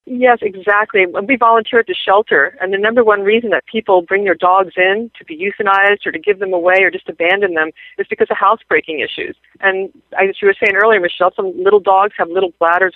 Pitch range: 180-220 Hz